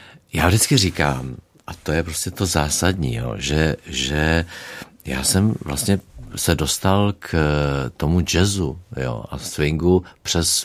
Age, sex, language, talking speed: 50-69, male, Czech, 135 wpm